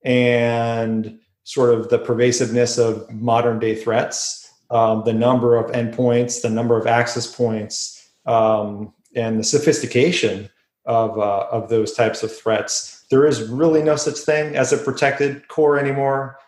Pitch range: 115-130 Hz